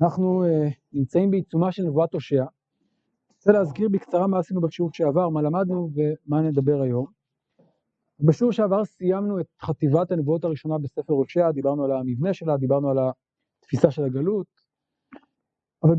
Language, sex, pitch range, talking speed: Hebrew, male, 140-180 Hz, 145 wpm